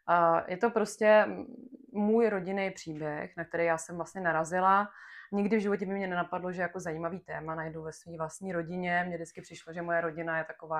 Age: 20-39